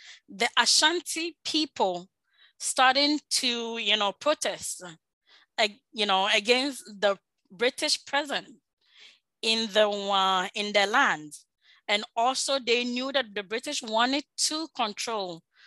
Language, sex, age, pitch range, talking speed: English, female, 20-39, 205-265 Hz, 115 wpm